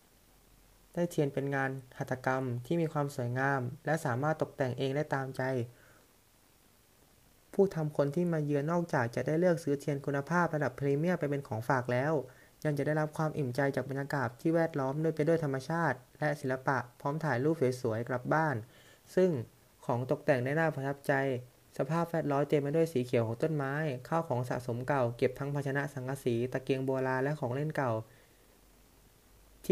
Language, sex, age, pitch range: Thai, male, 20-39, 125-150 Hz